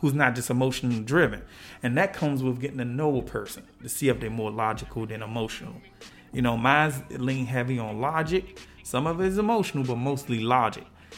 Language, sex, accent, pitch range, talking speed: English, male, American, 120-155 Hz, 200 wpm